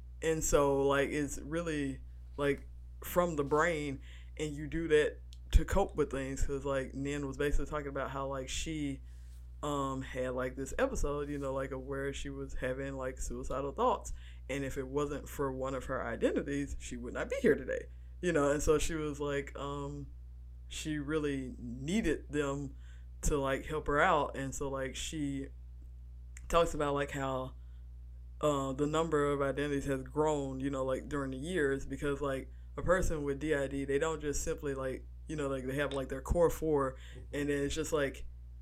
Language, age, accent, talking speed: English, 20-39, American, 185 wpm